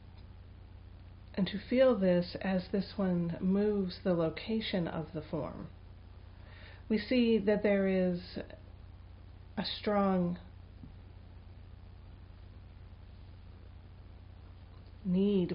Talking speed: 80 wpm